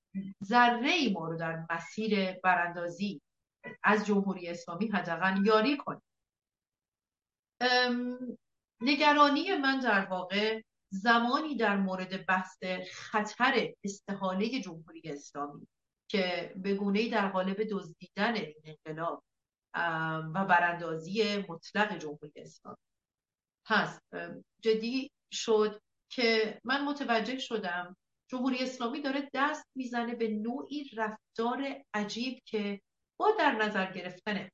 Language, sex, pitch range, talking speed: Persian, female, 165-225 Hz, 100 wpm